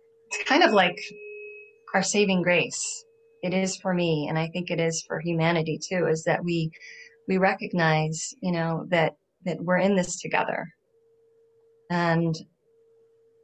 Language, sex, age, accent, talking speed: English, female, 30-49, American, 145 wpm